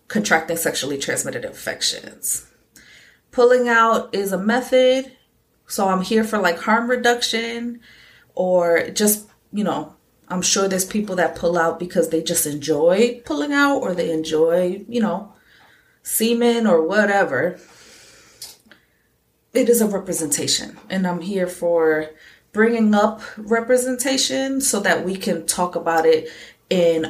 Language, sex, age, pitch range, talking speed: English, female, 20-39, 180-245 Hz, 135 wpm